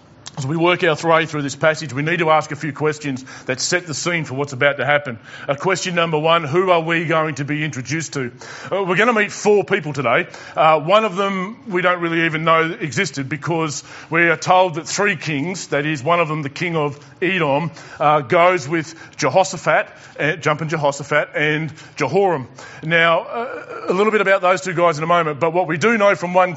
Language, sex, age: English, male, 40-59